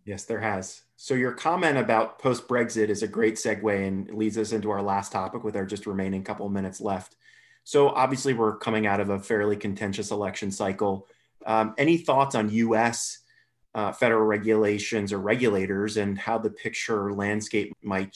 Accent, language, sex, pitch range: American, English, male, 100-120 Hz